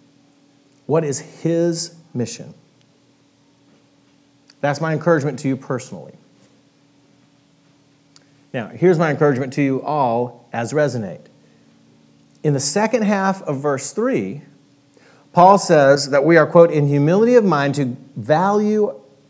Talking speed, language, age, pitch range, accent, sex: 120 wpm, English, 40-59, 140-170 Hz, American, male